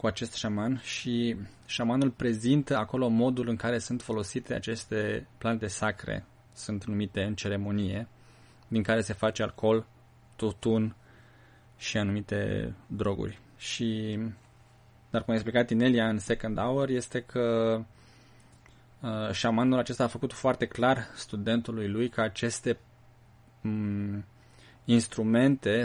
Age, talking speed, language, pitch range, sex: 20-39, 115 wpm, Romanian, 110-120 Hz, male